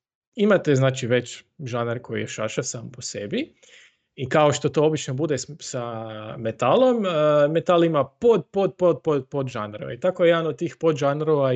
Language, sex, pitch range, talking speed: Croatian, male, 130-175 Hz, 170 wpm